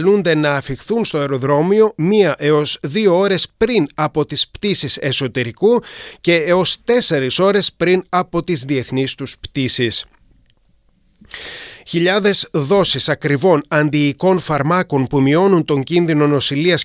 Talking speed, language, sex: 120 wpm, Greek, male